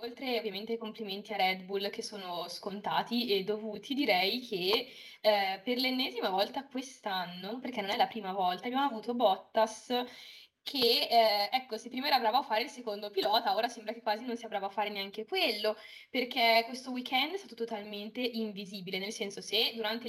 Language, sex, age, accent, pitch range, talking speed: Italian, female, 20-39, native, 205-240 Hz, 180 wpm